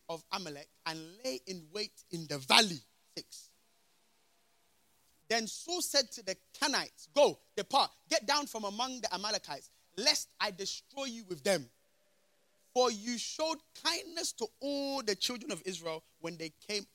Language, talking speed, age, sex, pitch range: English, 150 wpm, 30-49, male, 175-240 Hz